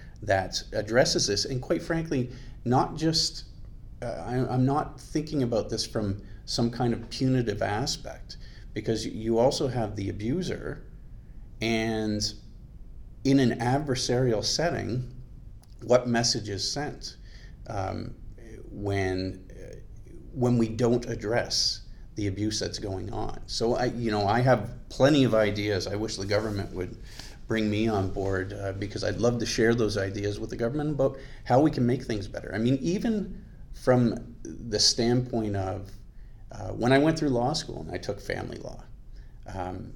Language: English